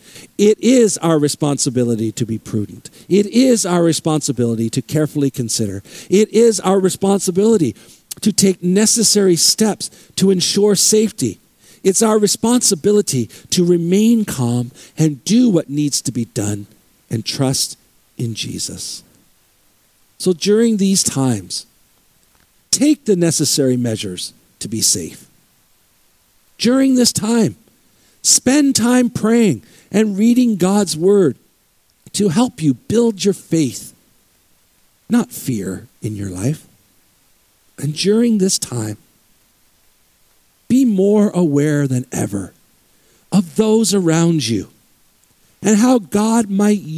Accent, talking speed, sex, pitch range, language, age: American, 115 wpm, male, 125-210 Hz, English, 50-69